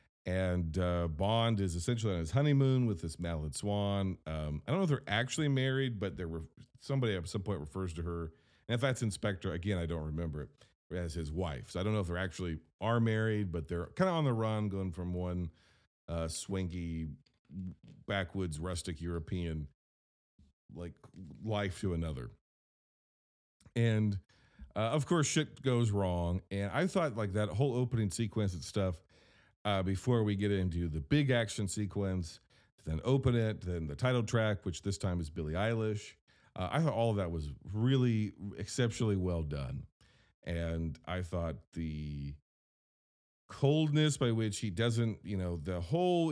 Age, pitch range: 40-59, 85-115 Hz